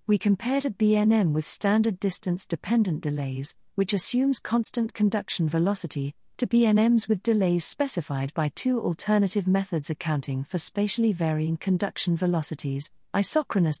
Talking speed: 125 wpm